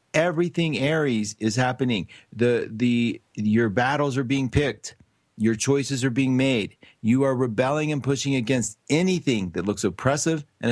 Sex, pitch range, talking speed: male, 115-140 Hz, 150 wpm